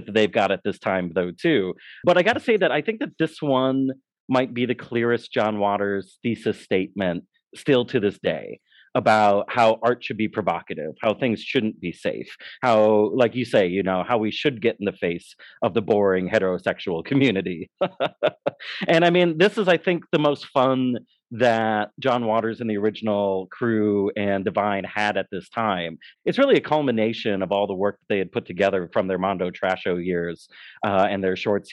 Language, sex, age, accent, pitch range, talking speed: English, male, 30-49, American, 100-135 Hz, 200 wpm